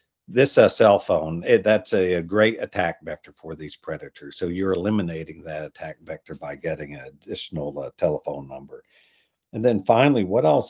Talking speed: 170 wpm